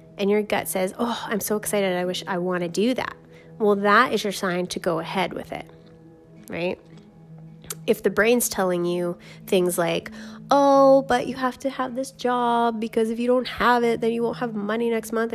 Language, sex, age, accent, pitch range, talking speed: English, female, 20-39, American, 185-230 Hz, 210 wpm